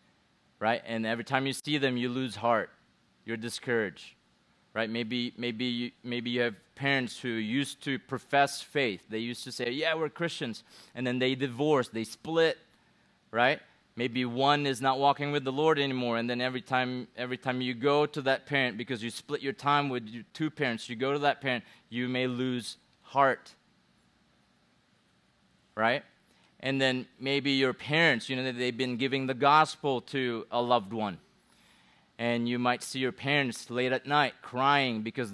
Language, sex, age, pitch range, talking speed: English, male, 30-49, 120-140 Hz, 180 wpm